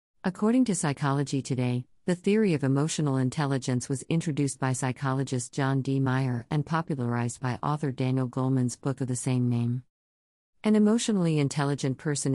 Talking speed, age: 150 wpm, 50-69